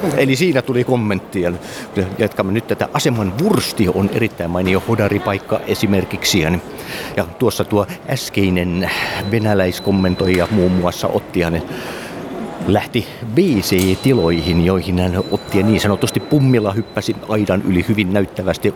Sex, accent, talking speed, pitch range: male, native, 115 wpm, 95-120 Hz